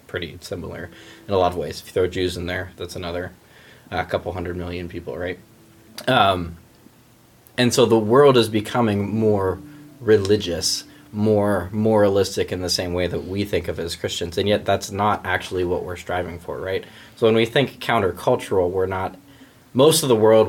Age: 20-39